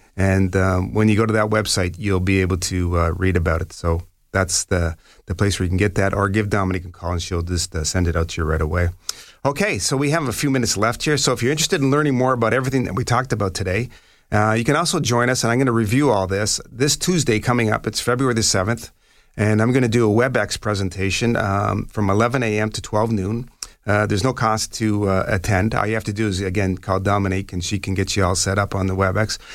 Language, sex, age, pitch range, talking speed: English, male, 40-59, 95-115 Hz, 260 wpm